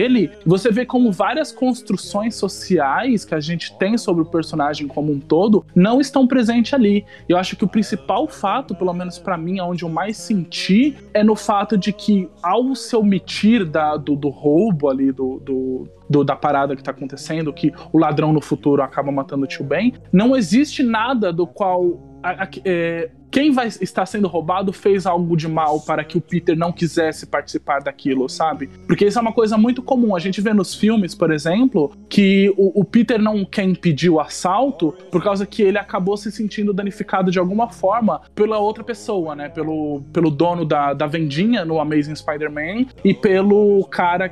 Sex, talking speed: male, 195 wpm